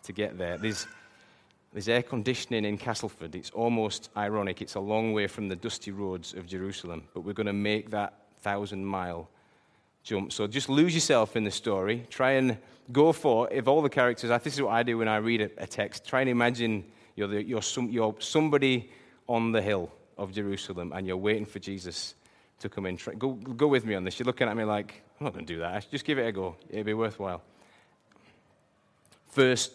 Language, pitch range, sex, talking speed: English, 100-125 Hz, male, 215 wpm